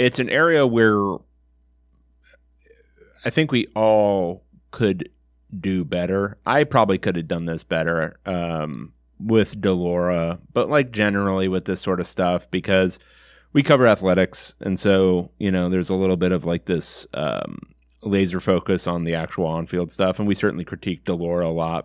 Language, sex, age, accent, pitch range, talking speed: English, male, 30-49, American, 85-110 Hz, 165 wpm